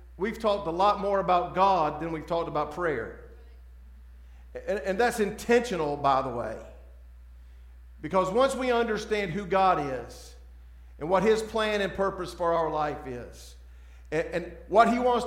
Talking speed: 160 wpm